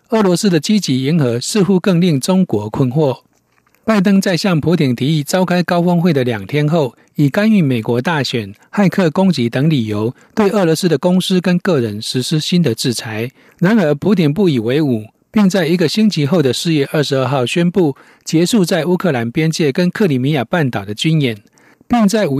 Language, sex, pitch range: Chinese, male, 130-185 Hz